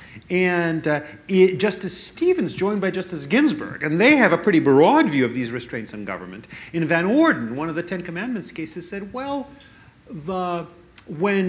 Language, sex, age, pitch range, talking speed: English, male, 40-59, 150-220 Hz, 165 wpm